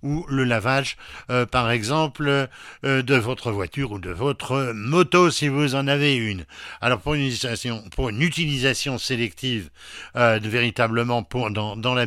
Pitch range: 110-140 Hz